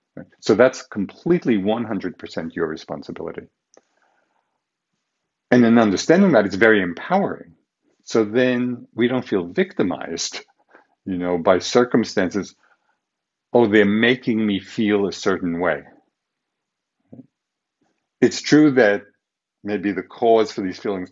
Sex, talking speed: male, 115 wpm